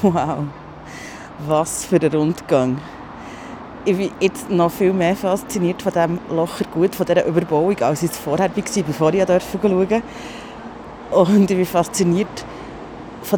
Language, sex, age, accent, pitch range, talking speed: German, female, 30-49, Austrian, 165-200 Hz, 150 wpm